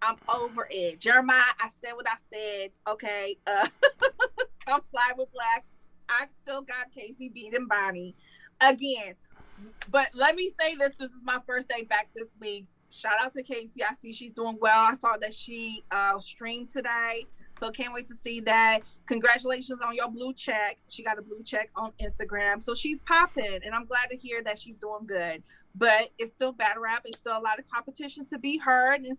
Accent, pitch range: American, 220-280 Hz